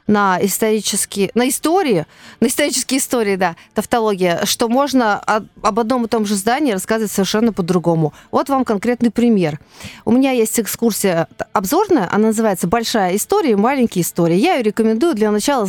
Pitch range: 200-245 Hz